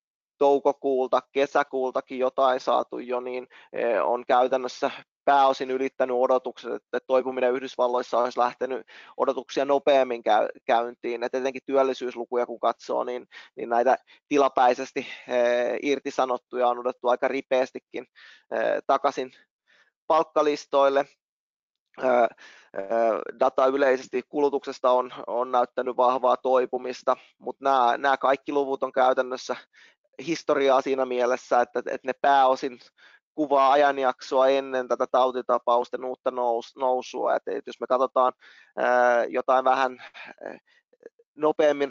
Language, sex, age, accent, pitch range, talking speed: Finnish, male, 20-39, native, 125-140 Hz, 95 wpm